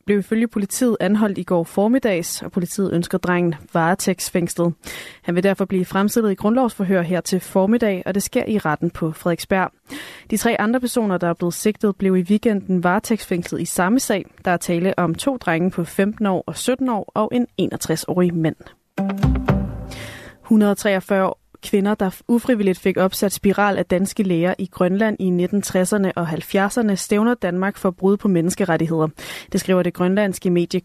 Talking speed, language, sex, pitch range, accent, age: 170 wpm, Danish, female, 180-210 Hz, native, 20-39